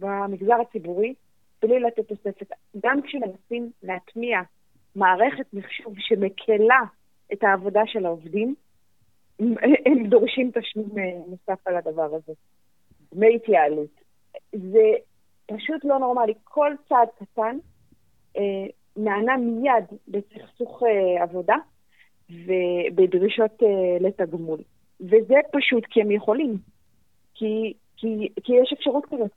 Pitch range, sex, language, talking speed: 195-250 Hz, female, Hebrew, 100 wpm